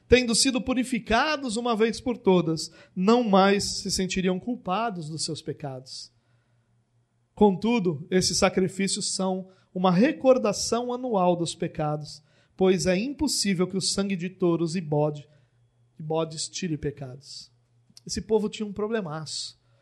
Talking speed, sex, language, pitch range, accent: 125 wpm, male, Portuguese, 170-215 Hz, Brazilian